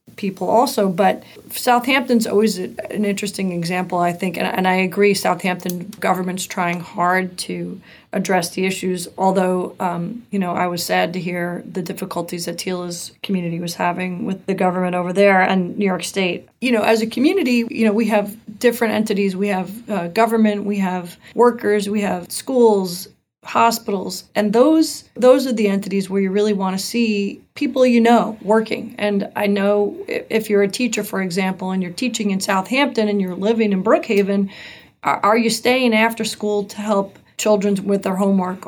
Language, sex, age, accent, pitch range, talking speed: English, female, 30-49, American, 185-220 Hz, 180 wpm